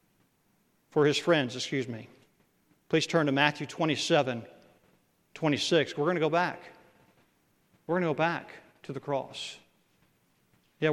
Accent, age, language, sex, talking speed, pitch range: American, 40-59, English, male, 135 wpm, 150-190 Hz